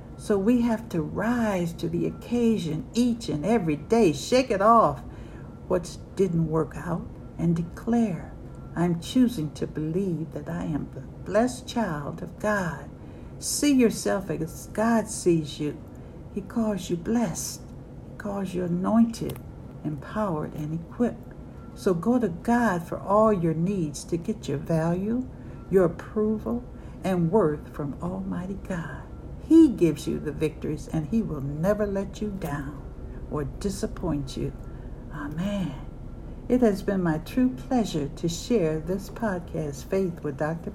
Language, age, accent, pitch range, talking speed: English, 60-79, American, 160-215 Hz, 145 wpm